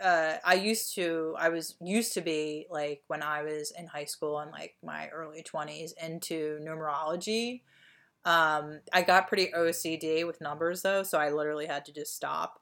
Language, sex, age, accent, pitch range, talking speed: English, female, 30-49, American, 155-190 Hz, 180 wpm